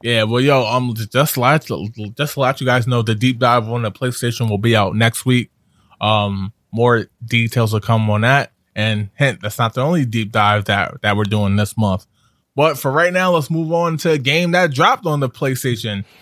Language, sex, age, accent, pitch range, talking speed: English, male, 20-39, American, 110-135 Hz, 220 wpm